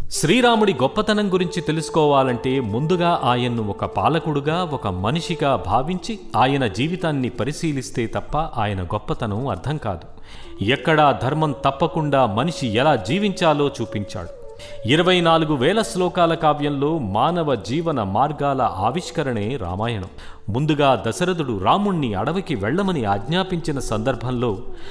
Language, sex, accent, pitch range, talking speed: Telugu, male, native, 120-175 Hz, 105 wpm